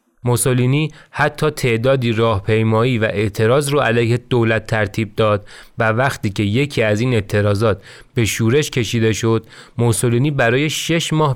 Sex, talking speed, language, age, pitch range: male, 135 wpm, Persian, 30-49, 110-140 Hz